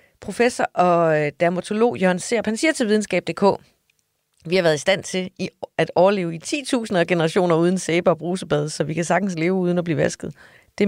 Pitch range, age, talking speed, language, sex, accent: 160-190 Hz, 30-49, 180 wpm, Danish, female, native